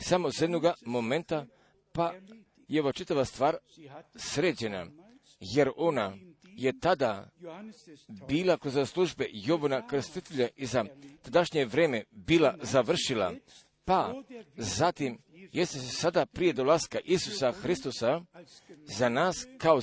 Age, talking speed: 50-69, 110 wpm